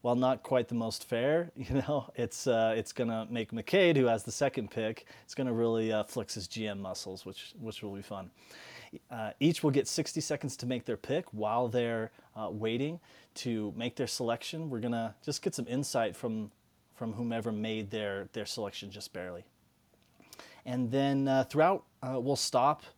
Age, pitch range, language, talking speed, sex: 30-49, 110-135 Hz, English, 190 wpm, male